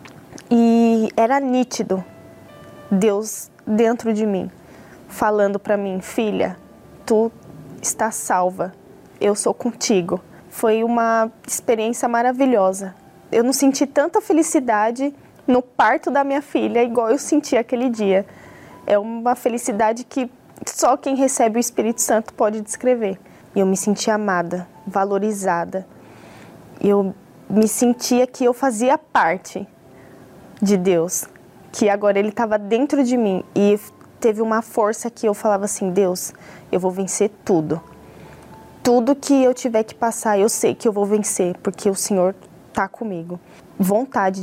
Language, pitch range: Portuguese, 190-240 Hz